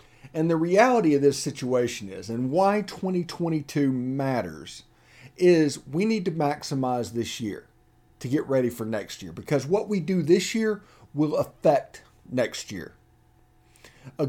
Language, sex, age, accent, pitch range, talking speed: English, male, 50-69, American, 115-165 Hz, 145 wpm